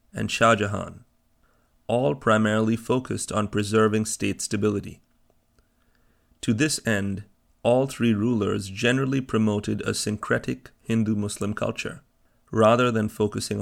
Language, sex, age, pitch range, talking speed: English, male, 30-49, 105-120 Hz, 110 wpm